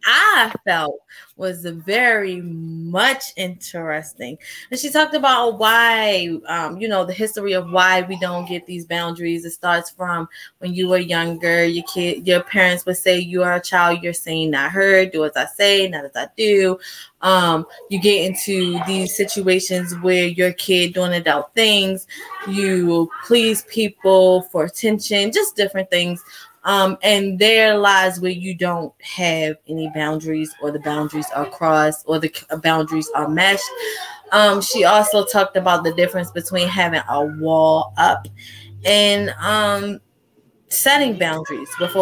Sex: female